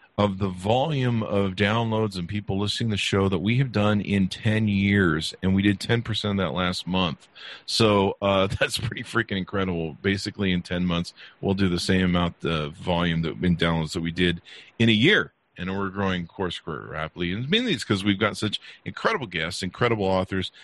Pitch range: 90-110 Hz